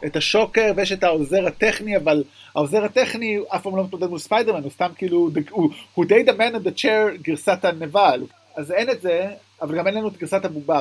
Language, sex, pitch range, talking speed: Hebrew, male, 150-210 Hz, 195 wpm